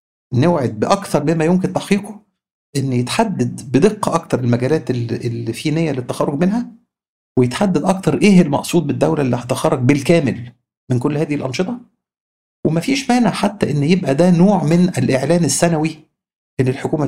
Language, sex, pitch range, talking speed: Arabic, male, 125-170 Hz, 140 wpm